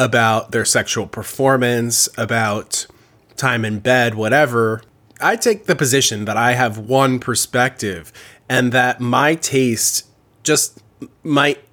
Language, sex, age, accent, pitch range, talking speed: English, male, 20-39, American, 115-145 Hz, 125 wpm